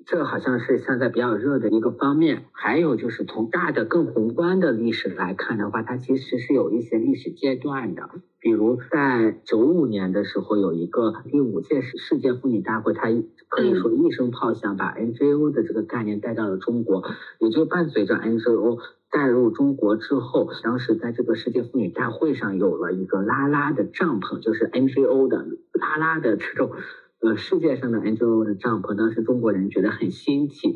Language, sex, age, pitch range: Chinese, male, 50-69, 100-135 Hz